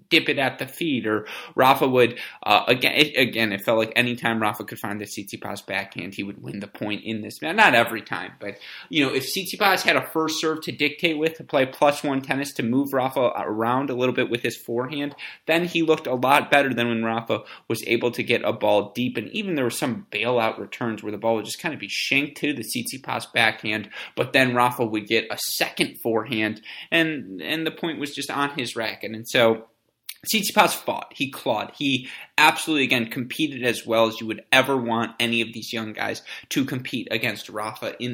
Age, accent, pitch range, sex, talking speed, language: 30-49, American, 115-145 Hz, male, 220 wpm, English